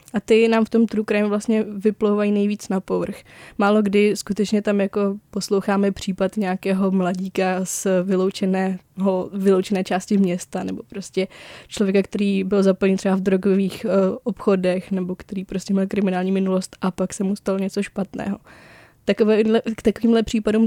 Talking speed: 155 wpm